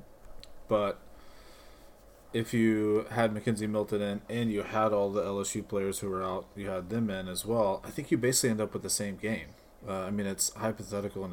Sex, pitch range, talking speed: male, 95-110 Hz, 205 wpm